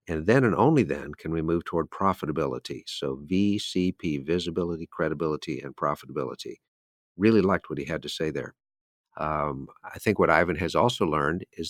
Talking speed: 170 wpm